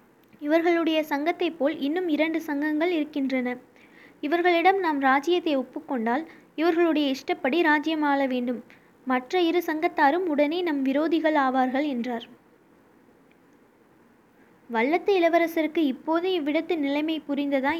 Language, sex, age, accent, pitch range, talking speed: Tamil, female, 20-39, native, 265-325 Hz, 100 wpm